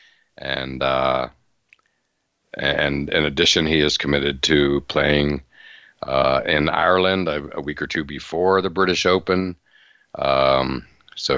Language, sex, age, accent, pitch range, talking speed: English, male, 60-79, American, 70-85 Hz, 120 wpm